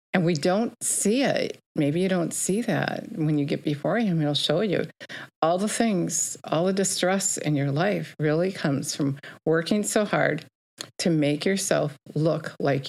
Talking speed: 180 wpm